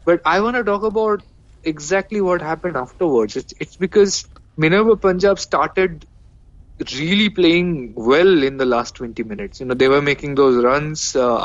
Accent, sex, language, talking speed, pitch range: Indian, male, English, 170 wpm, 130-165 Hz